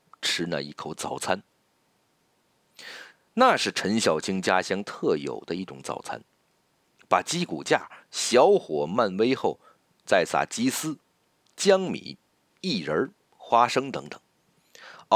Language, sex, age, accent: Chinese, male, 50-69, native